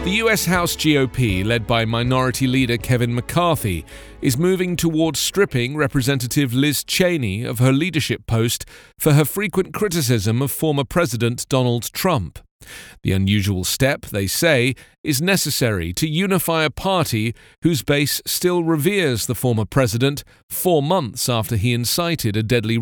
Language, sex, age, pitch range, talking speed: English, male, 40-59, 110-160 Hz, 145 wpm